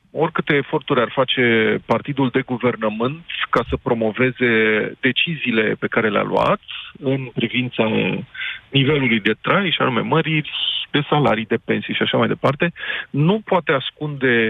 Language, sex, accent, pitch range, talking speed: Romanian, male, native, 125-170 Hz, 140 wpm